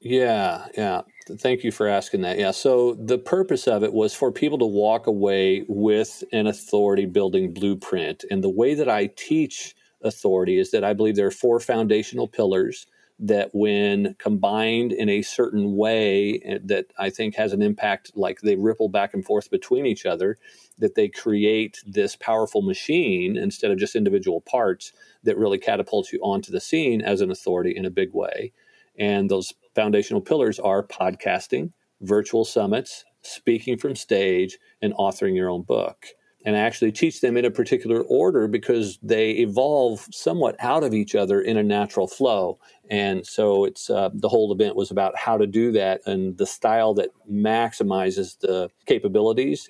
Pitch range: 100-140 Hz